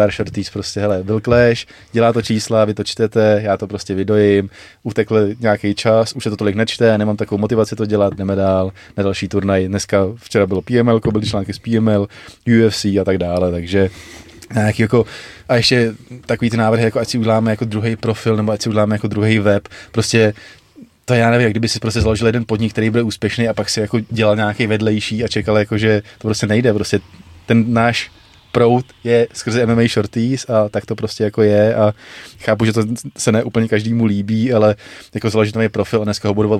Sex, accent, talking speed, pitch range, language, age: male, native, 205 wpm, 100-115 Hz, Czech, 20-39